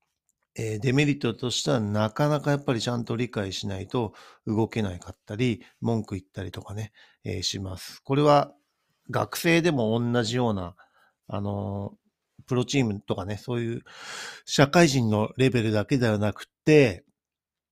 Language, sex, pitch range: Japanese, male, 105-135 Hz